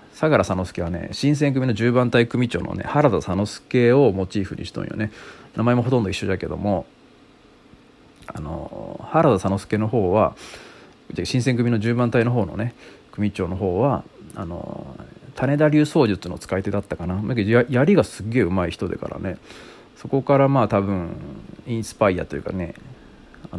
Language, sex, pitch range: Japanese, male, 95-125 Hz